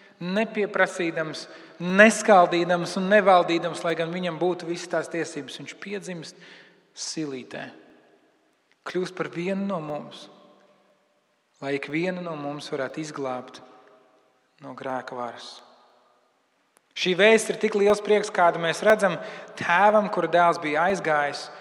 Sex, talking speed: male, 115 wpm